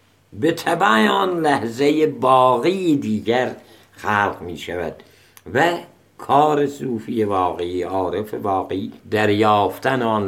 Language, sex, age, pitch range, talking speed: Persian, male, 60-79, 100-150 Hz, 100 wpm